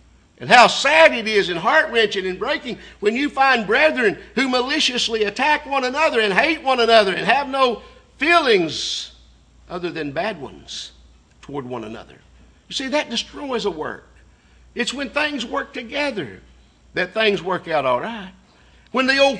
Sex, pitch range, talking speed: male, 190-270 Hz, 160 wpm